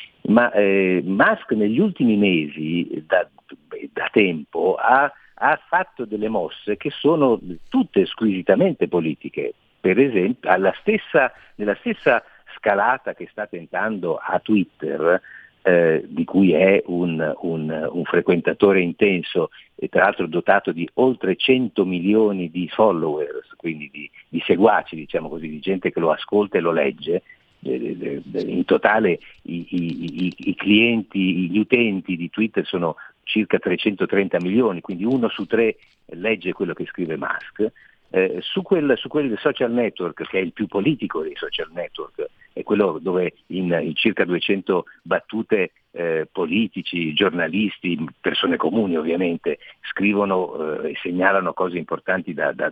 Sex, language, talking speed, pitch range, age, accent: male, Italian, 140 wpm, 90-115 Hz, 50-69, native